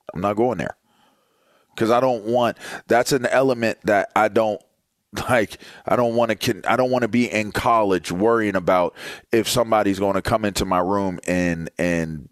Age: 30-49